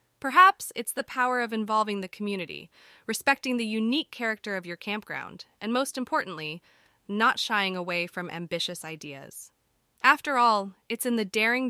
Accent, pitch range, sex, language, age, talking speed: American, 180-235 Hz, female, English, 20-39, 155 wpm